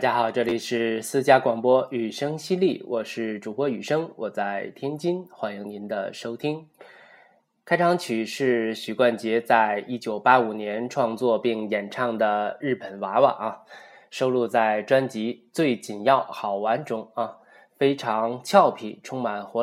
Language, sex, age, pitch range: Chinese, male, 20-39, 110-135 Hz